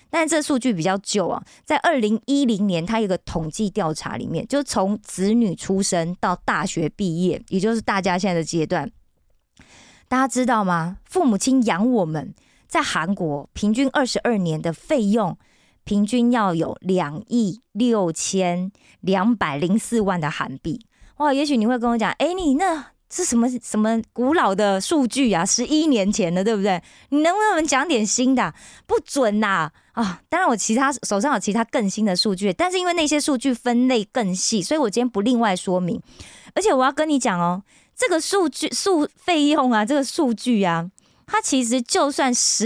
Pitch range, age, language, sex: 190-270 Hz, 20-39, Korean, female